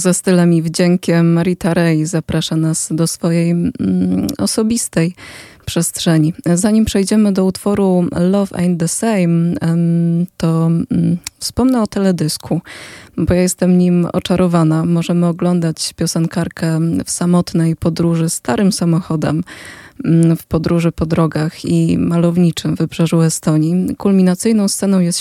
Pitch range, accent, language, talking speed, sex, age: 165-185 Hz, native, Polish, 120 wpm, female, 20-39